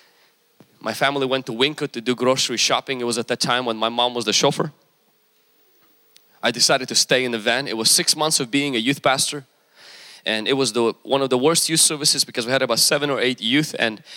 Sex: male